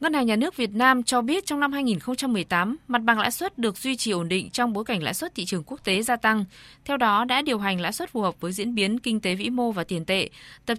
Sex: female